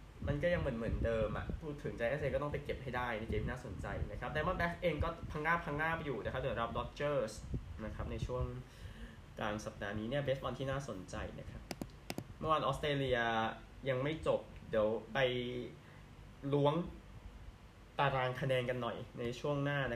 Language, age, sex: Thai, 20-39, male